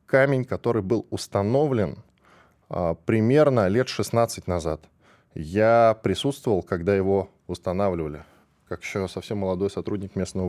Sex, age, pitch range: male, 10-29, 95-130 Hz